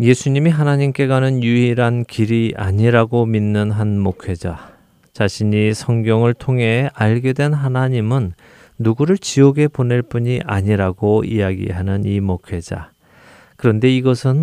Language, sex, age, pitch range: Korean, male, 40-59, 105-130 Hz